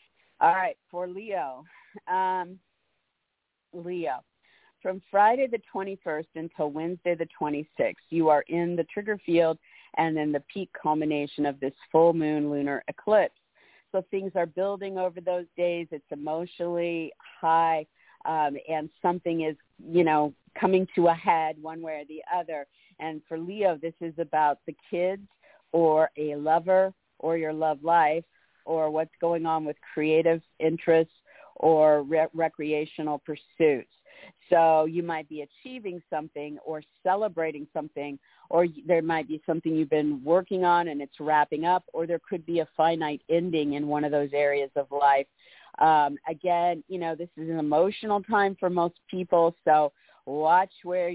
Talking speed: 155 wpm